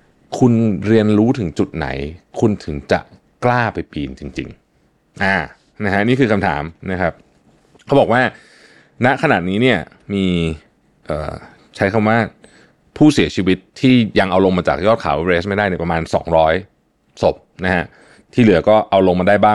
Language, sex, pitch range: Thai, male, 85-115 Hz